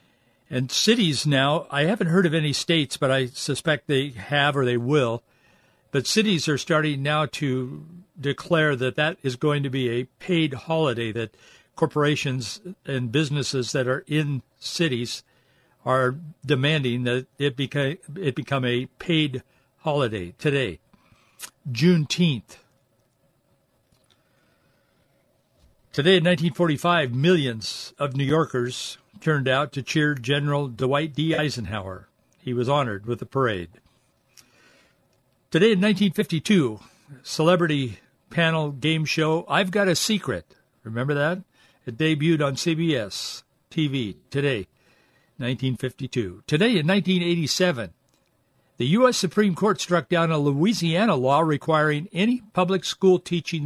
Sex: male